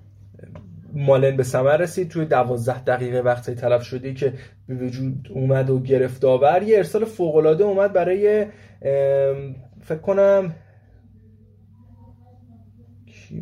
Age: 20-39